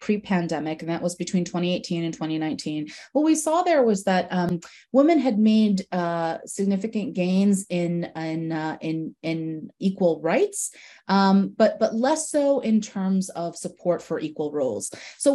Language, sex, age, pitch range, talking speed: Arabic, female, 30-49, 170-215 Hz, 160 wpm